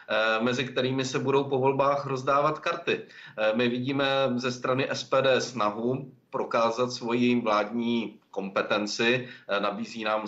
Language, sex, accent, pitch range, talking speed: Czech, male, native, 105-120 Hz, 115 wpm